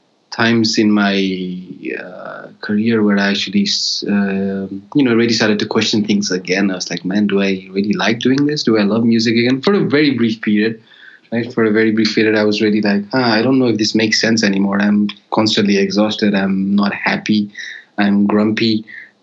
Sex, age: male, 20-39